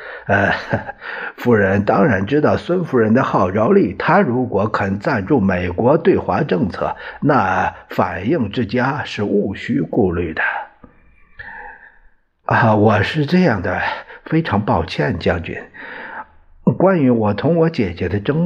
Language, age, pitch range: Chinese, 50-69, 110-170 Hz